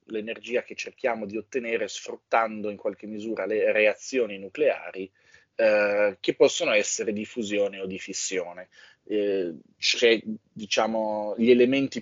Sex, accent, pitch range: male, native, 100-155 Hz